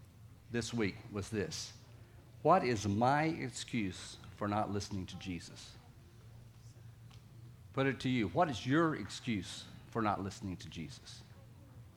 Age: 50-69